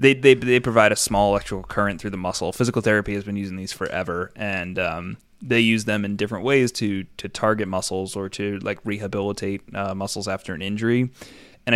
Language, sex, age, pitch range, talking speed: English, male, 20-39, 95-110 Hz, 205 wpm